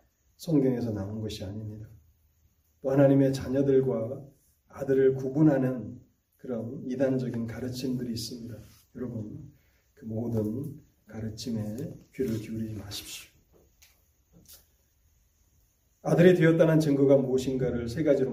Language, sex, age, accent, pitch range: Korean, male, 30-49, native, 110-145 Hz